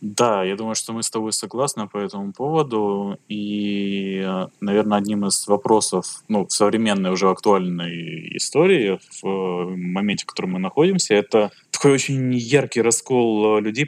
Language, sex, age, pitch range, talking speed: Russian, male, 20-39, 95-110 Hz, 145 wpm